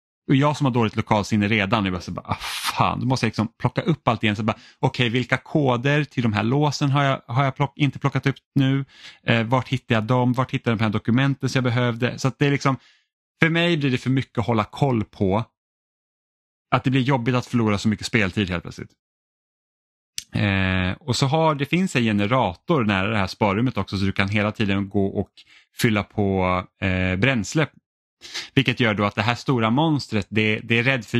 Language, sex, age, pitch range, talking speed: Swedish, male, 30-49, 105-140 Hz, 225 wpm